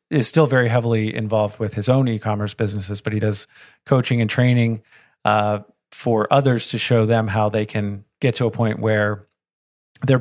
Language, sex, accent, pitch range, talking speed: English, male, American, 105-120 Hz, 180 wpm